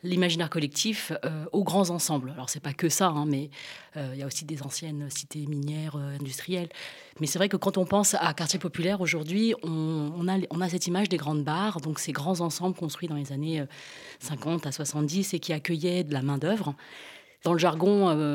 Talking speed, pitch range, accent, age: 220 wpm, 160-205 Hz, French, 30-49